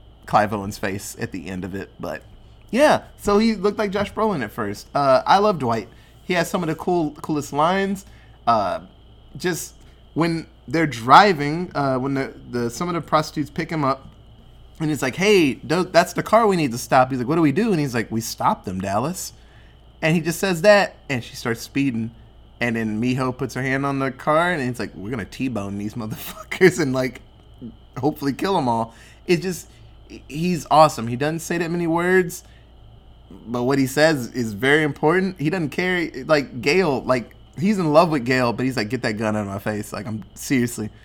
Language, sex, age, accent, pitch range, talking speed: English, male, 20-39, American, 115-165 Hz, 210 wpm